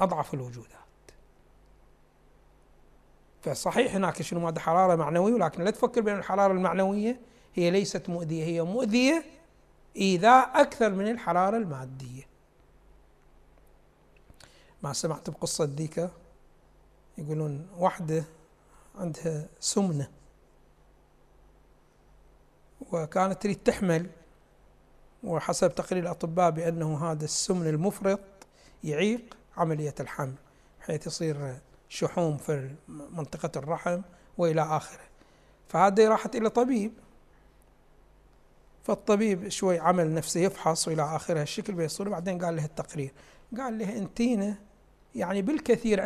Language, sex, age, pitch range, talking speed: Arabic, male, 60-79, 160-220 Hz, 100 wpm